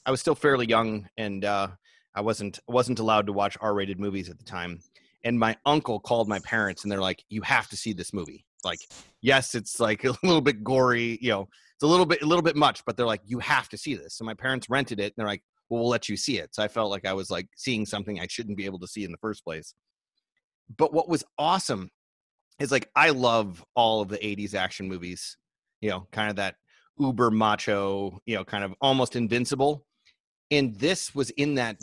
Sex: male